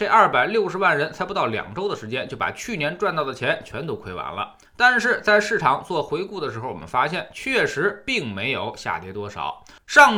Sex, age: male, 20-39